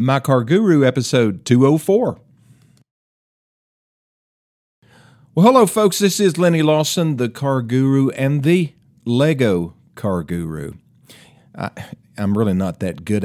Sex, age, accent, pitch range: male, 50-69, American, 105-135 Hz